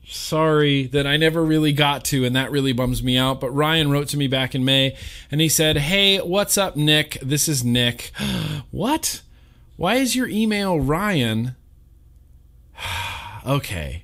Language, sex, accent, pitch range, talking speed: English, male, American, 110-155 Hz, 160 wpm